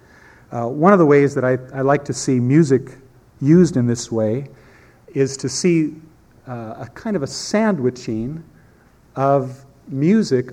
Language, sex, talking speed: English, male, 155 wpm